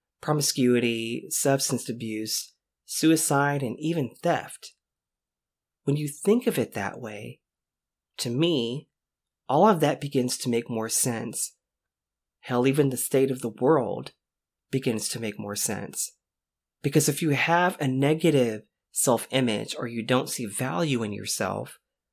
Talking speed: 135 wpm